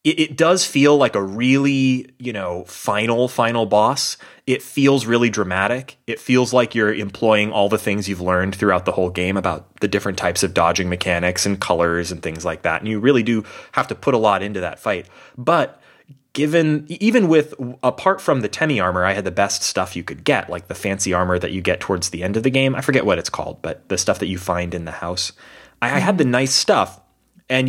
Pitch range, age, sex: 95-130 Hz, 30-49, male